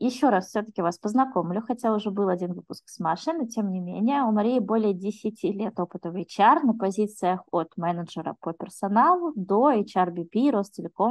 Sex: female